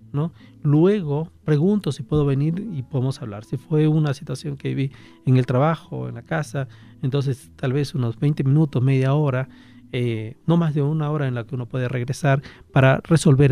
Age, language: 40-59, English